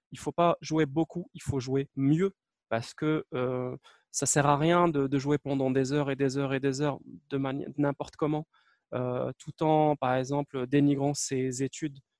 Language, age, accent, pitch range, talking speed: French, 20-39, French, 125-155 Hz, 205 wpm